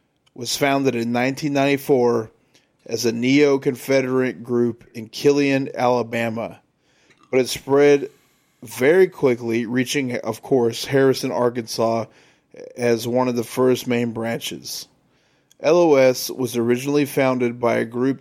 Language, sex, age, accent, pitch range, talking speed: English, male, 30-49, American, 120-135 Hz, 115 wpm